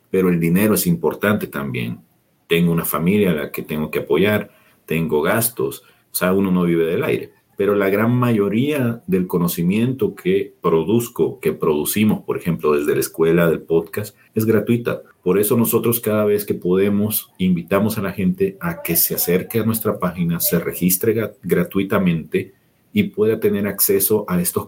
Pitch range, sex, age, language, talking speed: 90-125 Hz, male, 50-69, Spanish, 170 wpm